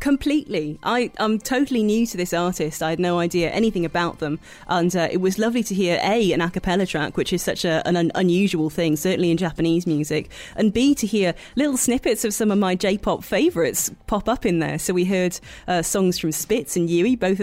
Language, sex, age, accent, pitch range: Japanese, female, 30-49, British, 165-210 Hz